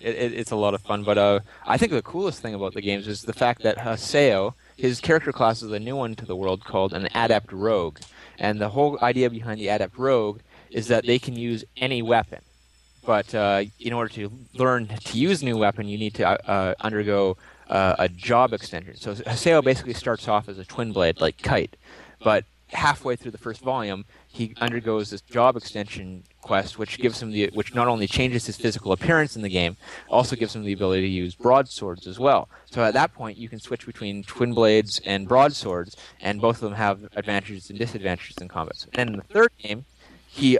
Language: English